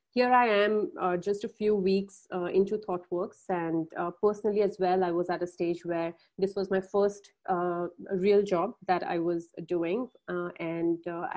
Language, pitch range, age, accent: English, 175-205 Hz, 30-49, Indian